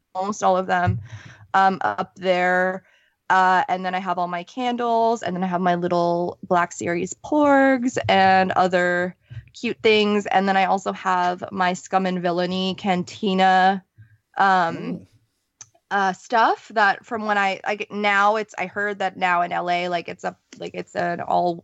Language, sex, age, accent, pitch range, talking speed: English, female, 20-39, American, 170-200 Hz, 170 wpm